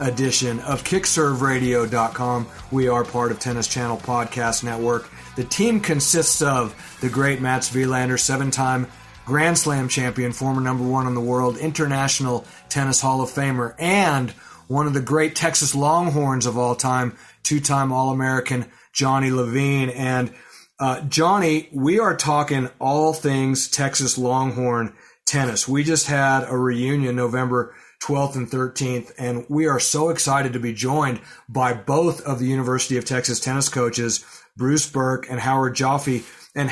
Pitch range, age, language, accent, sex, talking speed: 125-140 Hz, 30-49, English, American, male, 150 wpm